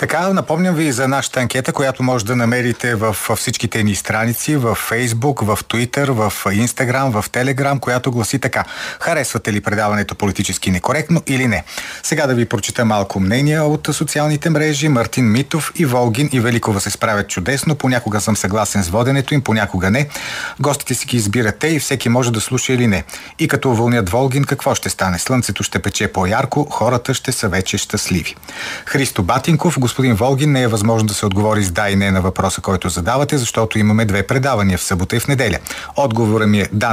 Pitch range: 105-135 Hz